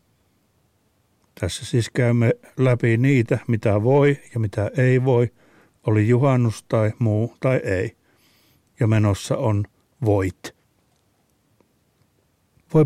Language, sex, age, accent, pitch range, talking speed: Finnish, male, 60-79, native, 110-140 Hz, 105 wpm